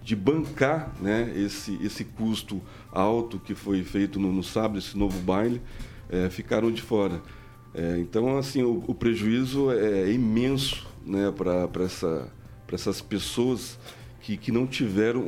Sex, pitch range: male, 100-120 Hz